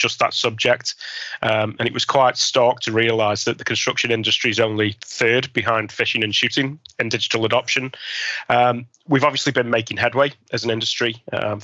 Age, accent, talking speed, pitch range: 20-39, British, 180 wpm, 105-115 Hz